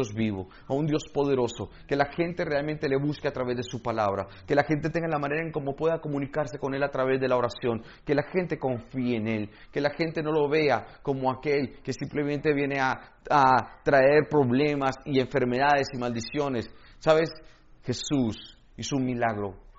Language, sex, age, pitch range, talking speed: Spanish, male, 40-59, 110-145 Hz, 190 wpm